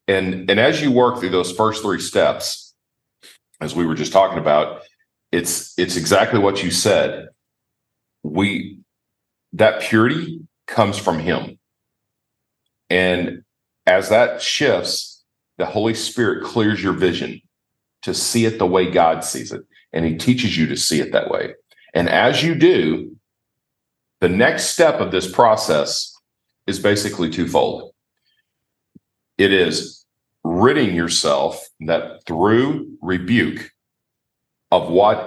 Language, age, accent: English, 40-59, American